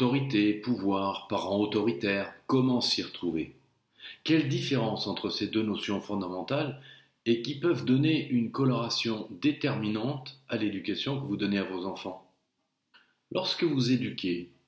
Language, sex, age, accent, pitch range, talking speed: French, male, 40-59, French, 100-135 Hz, 130 wpm